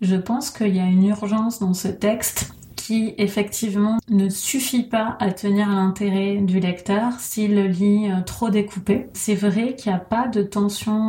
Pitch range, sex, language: 190-215 Hz, female, French